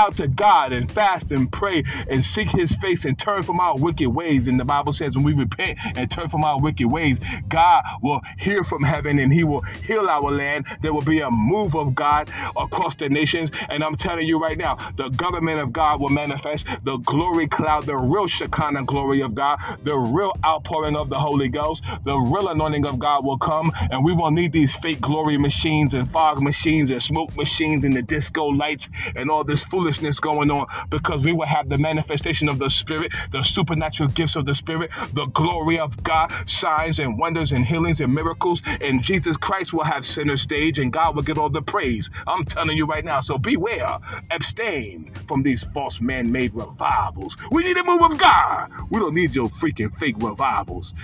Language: English